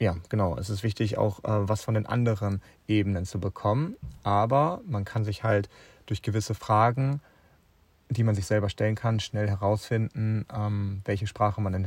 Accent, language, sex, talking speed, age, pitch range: German, German, male, 175 wpm, 30-49, 100-115 Hz